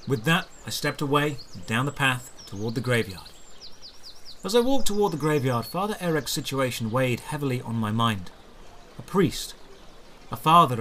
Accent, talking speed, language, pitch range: British, 165 wpm, English, 115-165 Hz